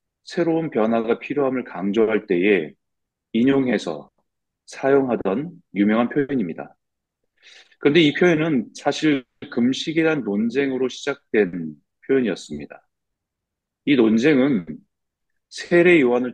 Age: 30-49